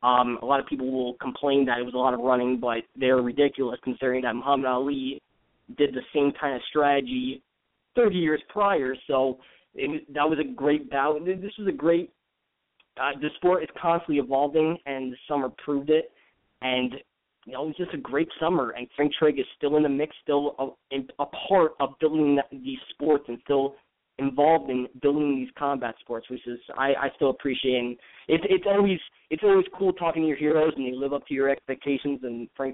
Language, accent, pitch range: English, American, 130-155 Hz